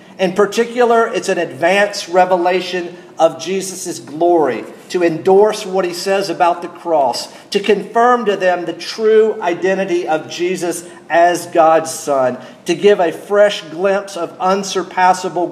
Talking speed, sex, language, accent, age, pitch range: 140 wpm, male, English, American, 50-69, 170-200 Hz